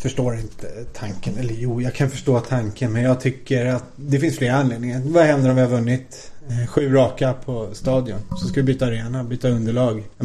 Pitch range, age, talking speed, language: 115-135 Hz, 30-49, 205 wpm, English